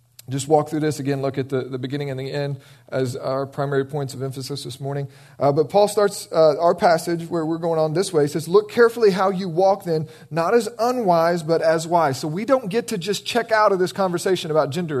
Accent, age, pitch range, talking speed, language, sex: American, 40-59, 120-165 Hz, 245 wpm, English, male